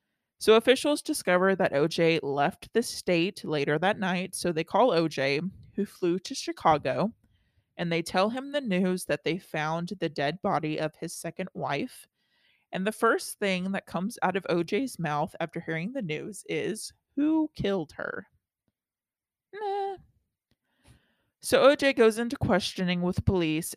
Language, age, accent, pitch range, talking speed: English, 20-39, American, 160-205 Hz, 150 wpm